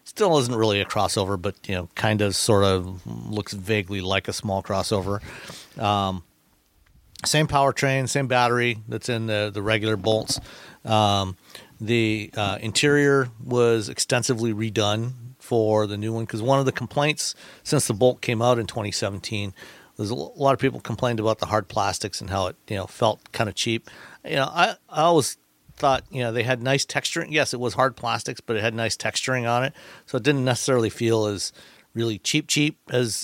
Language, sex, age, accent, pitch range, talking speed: English, male, 50-69, American, 105-125 Hz, 190 wpm